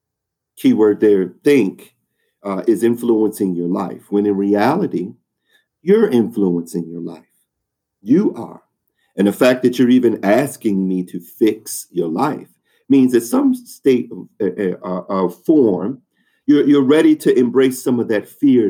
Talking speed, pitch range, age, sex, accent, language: 150 wpm, 95-125 Hz, 50-69, male, American, English